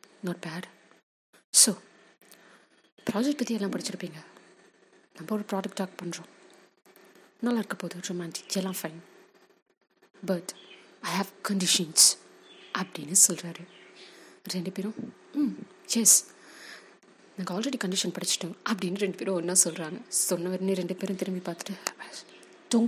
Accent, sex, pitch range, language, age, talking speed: native, female, 175-210 Hz, Tamil, 30-49, 95 wpm